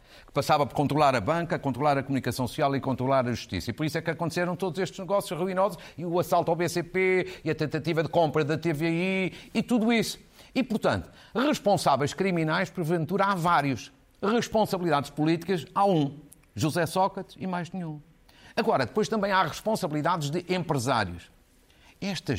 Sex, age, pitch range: male, 50-69, 130-190 Hz